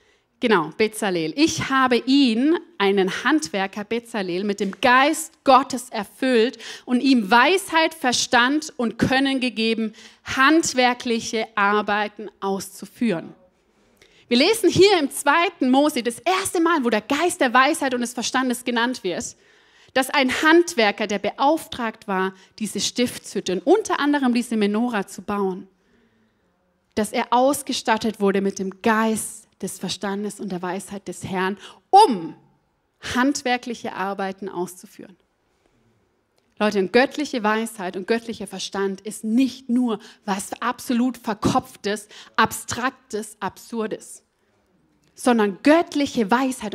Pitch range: 205-265 Hz